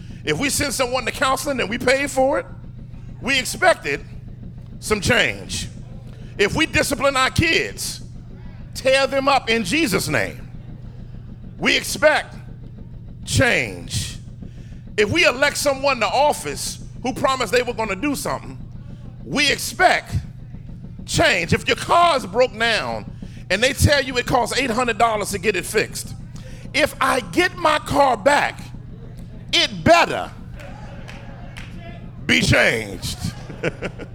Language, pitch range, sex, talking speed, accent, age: English, 190-270 Hz, male, 125 wpm, American, 40-59